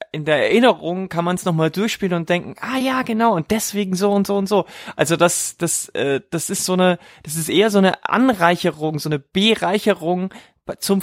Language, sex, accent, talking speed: German, male, German, 210 wpm